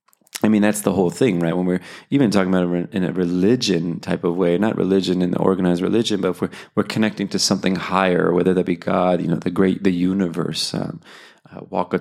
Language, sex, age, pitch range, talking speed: English, male, 30-49, 90-105 Hz, 225 wpm